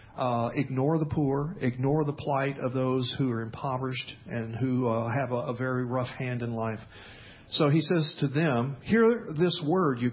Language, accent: English, American